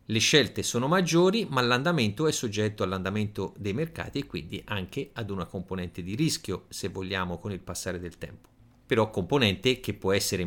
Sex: male